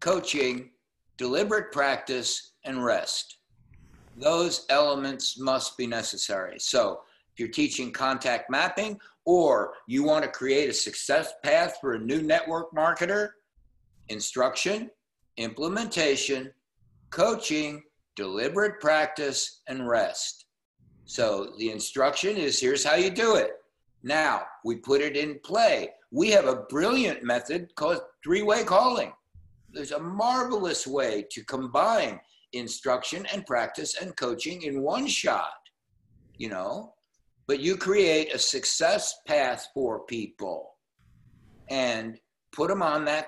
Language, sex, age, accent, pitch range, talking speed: English, male, 60-79, American, 125-210 Hz, 120 wpm